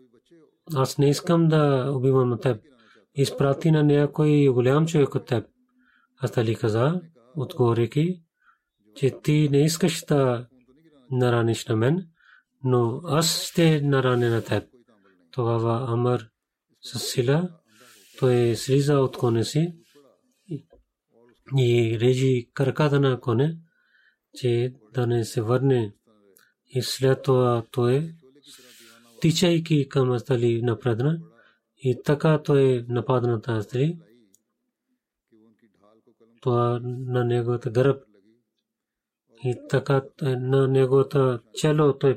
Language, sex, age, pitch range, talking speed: Bulgarian, male, 30-49, 120-145 Hz, 105 wpm